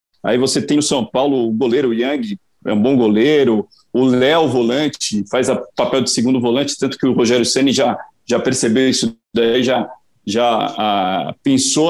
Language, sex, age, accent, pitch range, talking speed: Portuguese, male, 40-59, Brazilian, 125-160 Hz, 180 wpm